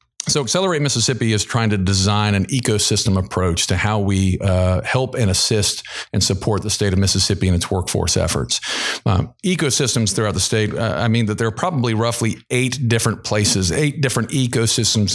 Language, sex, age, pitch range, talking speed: English, male, 50-69, 95-115 Hz, 180 wpm